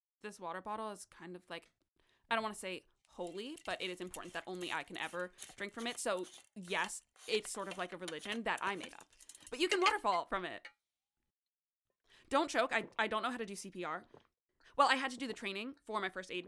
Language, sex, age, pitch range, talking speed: English, female, 20-39, 180-235 Hz, 235 wpm